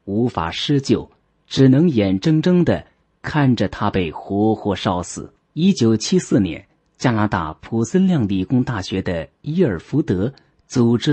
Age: 30-49